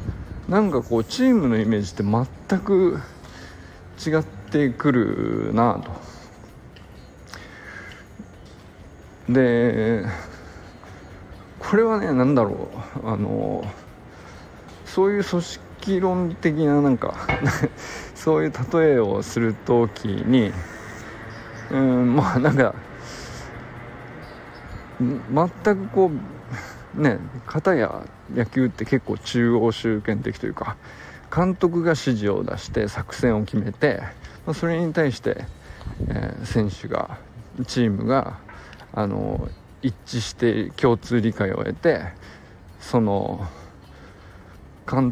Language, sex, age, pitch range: Japanese, male, 50-69, 95-130 Hz